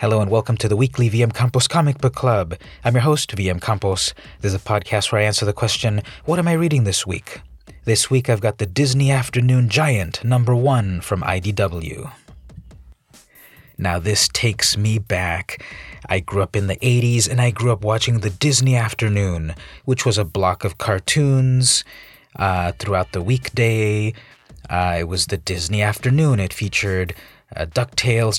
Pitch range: 95-120 Hz